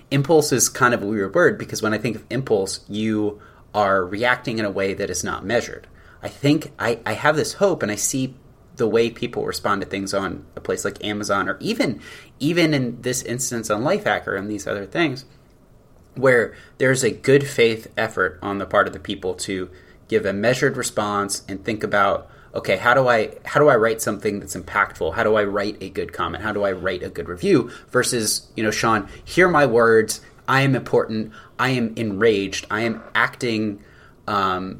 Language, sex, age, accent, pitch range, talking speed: English, male, 30-49, American, 105-135 Hz, 205 wpm